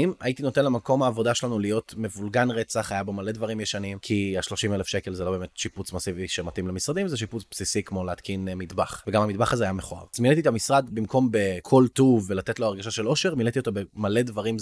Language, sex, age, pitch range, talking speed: Hebrew, male, 20-39, 105-130 Hz, 215 wpm